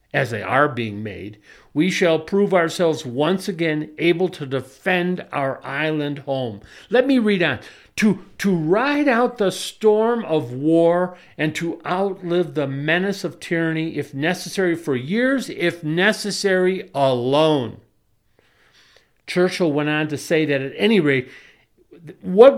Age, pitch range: 50-69, 135-185 Hz